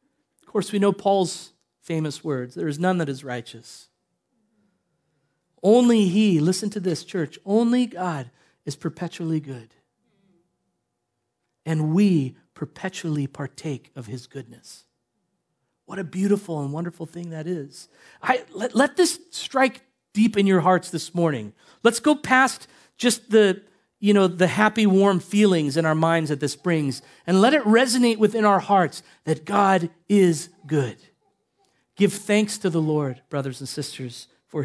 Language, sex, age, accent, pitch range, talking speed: English, male, 40-59, American, 155-210 Hz, 150 wpm